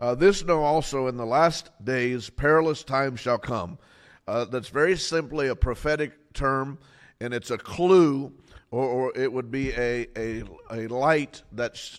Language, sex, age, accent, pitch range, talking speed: English, male, 50-69, American, 120-150 Hz, 165 wpm